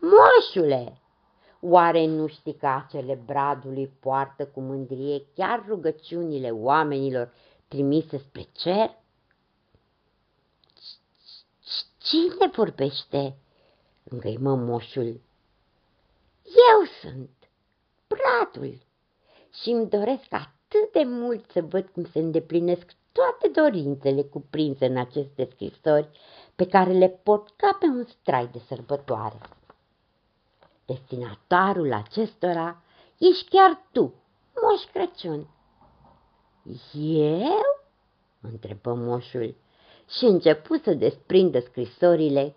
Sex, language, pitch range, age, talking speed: female, Romanian, 135-220 Hz, 50-69, 90 wpm